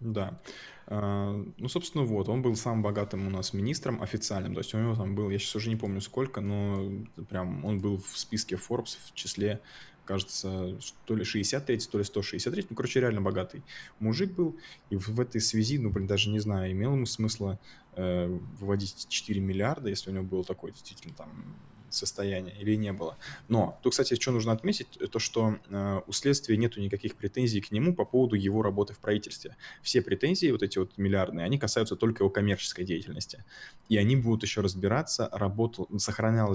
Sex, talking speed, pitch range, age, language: male, 185 wpm, 95-115 Hz, 20-39, Russian